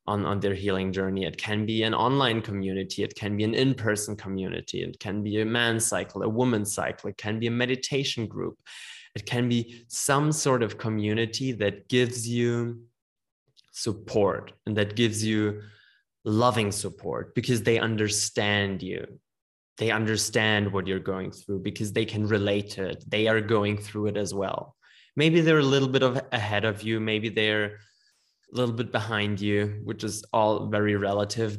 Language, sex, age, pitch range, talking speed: English, male, 20-39, 105-120 Hz, 175 wpm